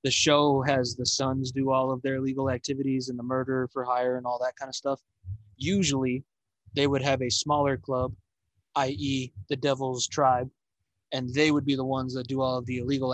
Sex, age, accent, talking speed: male, 20-39, American, 205 wpm